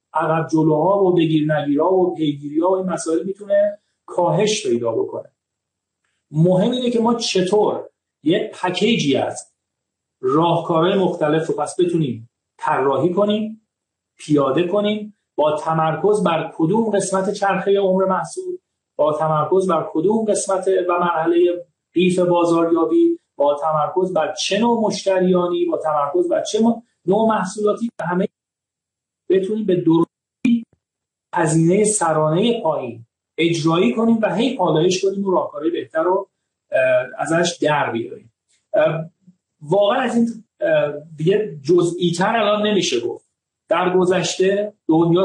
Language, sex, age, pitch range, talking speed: Persian, male, 40-59, 165-210 Hz, 120 wpm